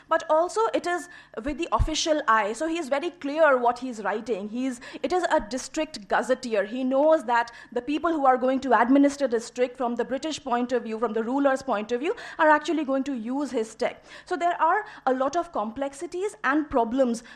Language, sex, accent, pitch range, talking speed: English, female, Indian, 240-310 Hz, 220 wpm